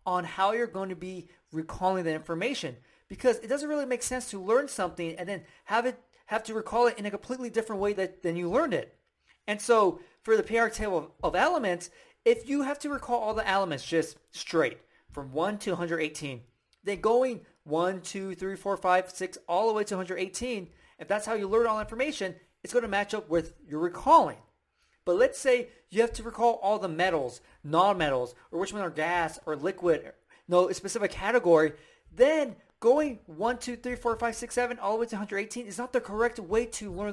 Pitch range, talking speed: 180-245 Hz, 205 wpm